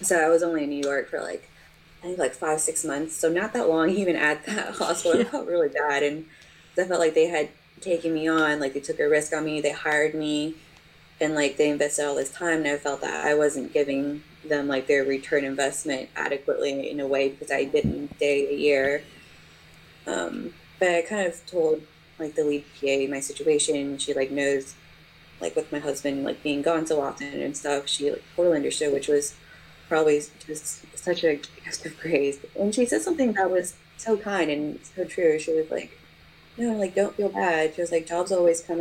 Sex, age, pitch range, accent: female, 20-39, 145-175 Hz, American